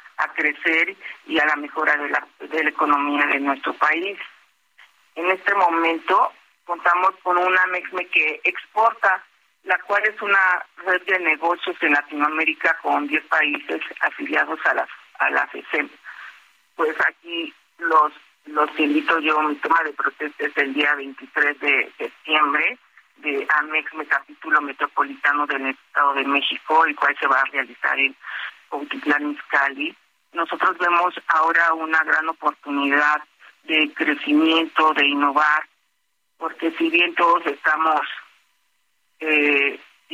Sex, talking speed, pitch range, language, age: male, 135 wpm, 150-185 Hz, Spanish, 40-59